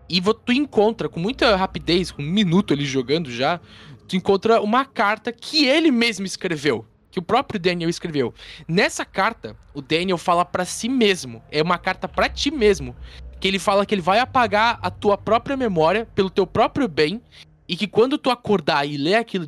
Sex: male